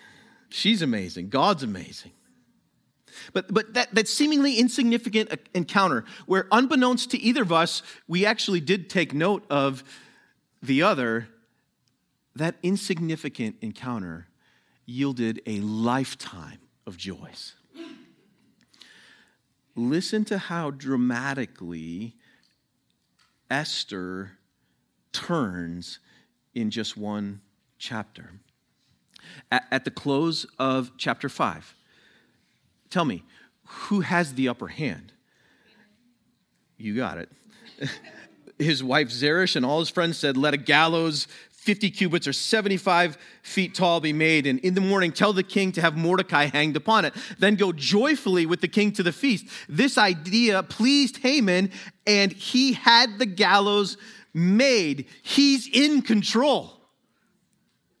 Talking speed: 115 wpm